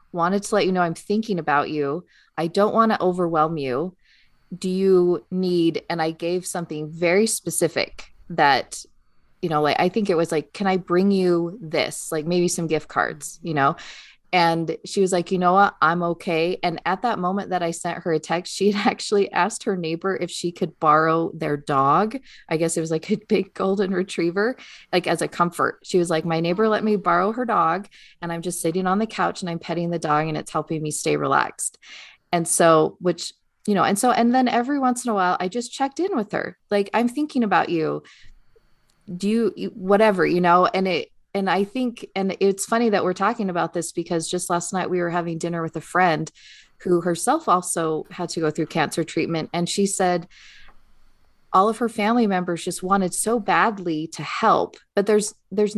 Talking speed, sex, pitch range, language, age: 210 wpm, female, 170-205 Hz, English, 20-39